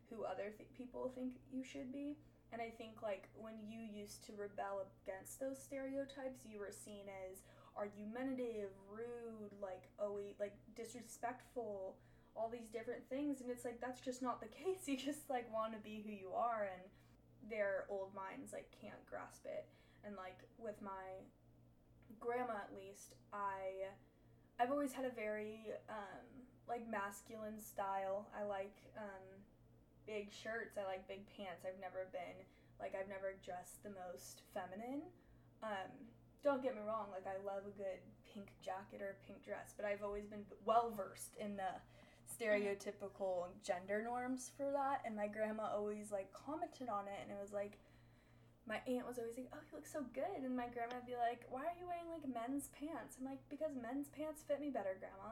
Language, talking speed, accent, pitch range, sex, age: English, 180 wpm, American, 200-255 Hz, female, 10-29